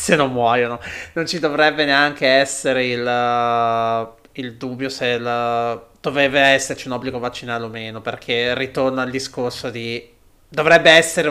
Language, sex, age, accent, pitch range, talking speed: Italian, male, 30-49, native, 120-140 Hz, 155 wpm